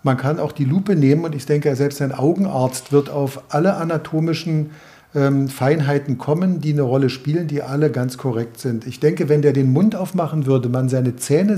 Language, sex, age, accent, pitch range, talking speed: German, male, 50-69, German, 125-155 Hz, 200 wpm